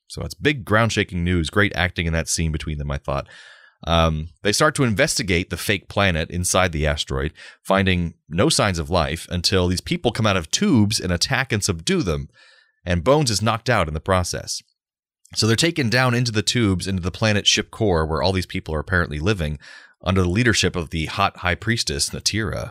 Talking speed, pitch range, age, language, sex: 210 wpm, 80-105 Hz, 30-49, English, male